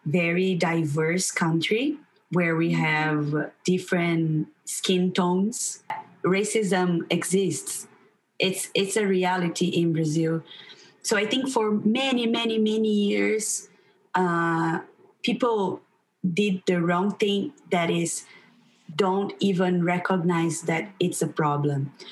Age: 20-39